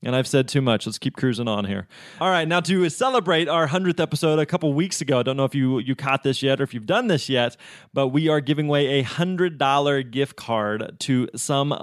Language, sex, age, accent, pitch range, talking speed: English, male, 20-39, American, 125-155 Hz, 245 wpm